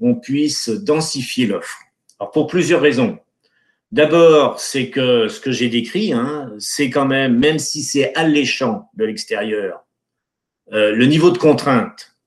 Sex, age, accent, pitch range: male, 50-69, French, 115-170 Hz